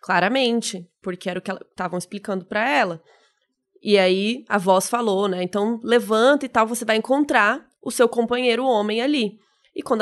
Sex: female